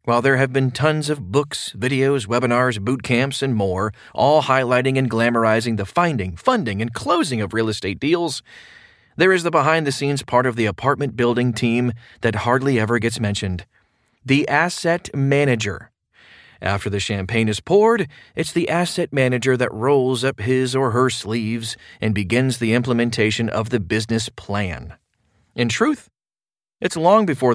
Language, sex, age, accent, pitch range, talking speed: English, male, 30-49, American, 110-140 Hz, 165 wpm